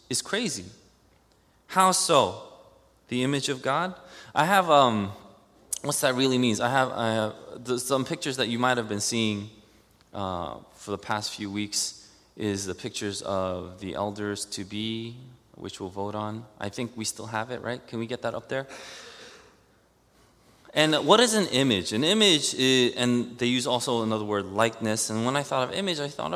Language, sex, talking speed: English, male, 185 wpm